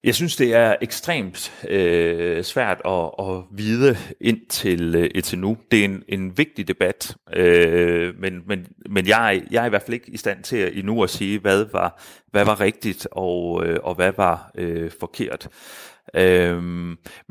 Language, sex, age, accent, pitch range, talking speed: Danish, male, 30-49, native, 90-120 Hz, 170 wpm